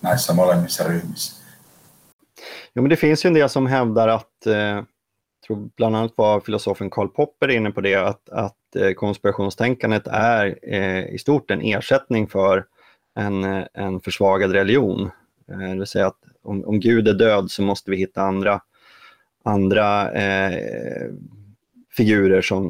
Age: 30-49